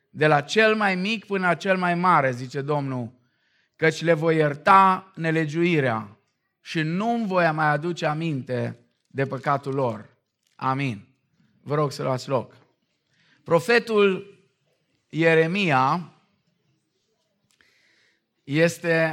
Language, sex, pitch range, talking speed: Romanian, male, 150-200 Hz, 110 wpm